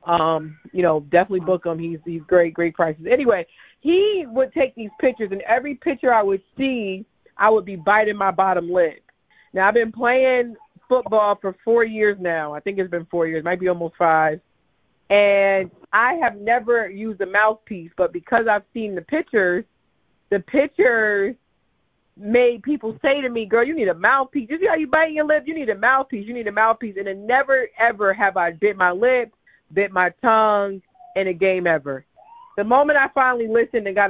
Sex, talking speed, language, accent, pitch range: female, 200 wpm, English, American, 185-245 Hz